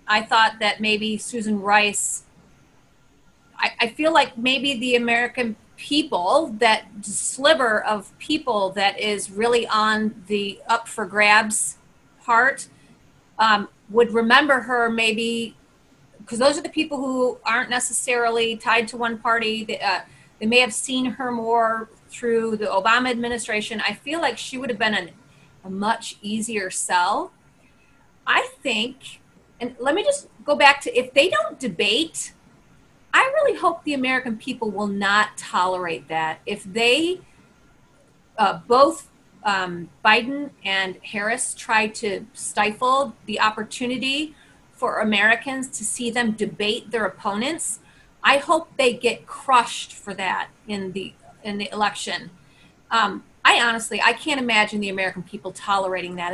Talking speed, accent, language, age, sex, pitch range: 145 wpm, American, English, 30-49, female, 205-250 Hz